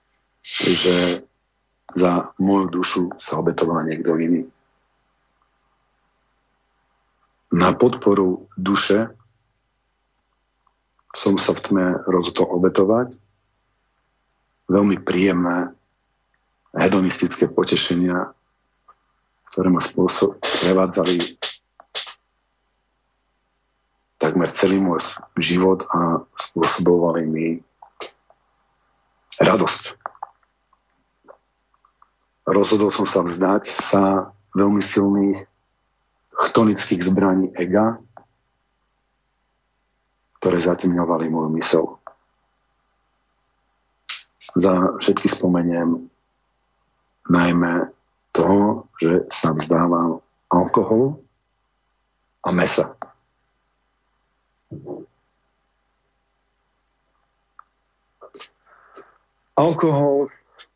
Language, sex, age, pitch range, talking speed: Slovak, male, 50-69, 85-100 Hz, 60 wpm